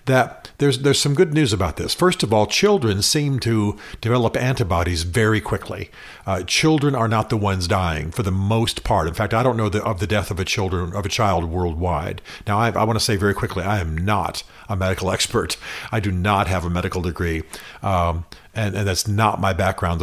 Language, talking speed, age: English, 220 wpm, 50-69